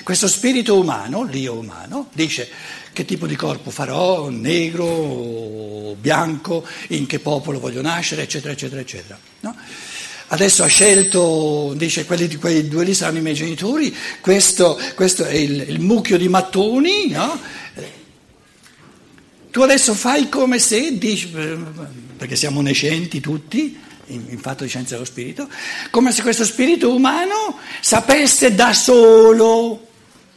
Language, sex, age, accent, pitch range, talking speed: Italian, male, 60-79, native, 130-195 Hz, 135 wpm